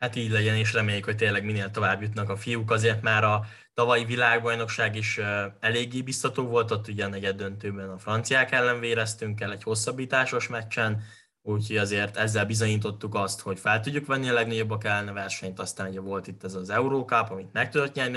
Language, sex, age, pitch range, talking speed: Hungarian, male, 10-29, 100-115 Hz, 180 wpm